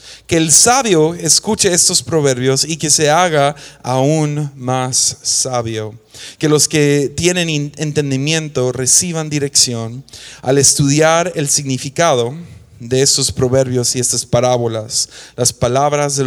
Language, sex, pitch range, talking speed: English, male, 130-185 Hz, 120 wpm